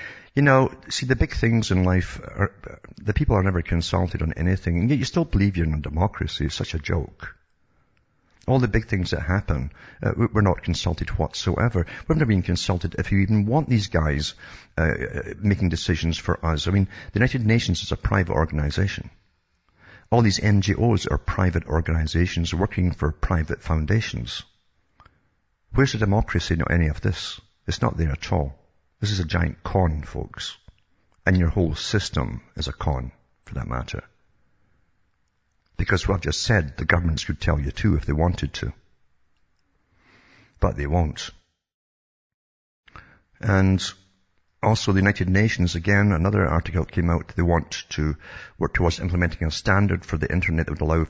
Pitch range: 80-100 Hz